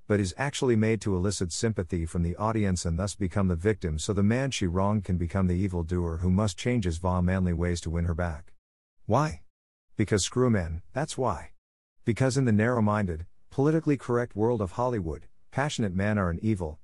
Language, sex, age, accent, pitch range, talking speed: English, male, 50-69, American, 90-115 Hz, 205 wpm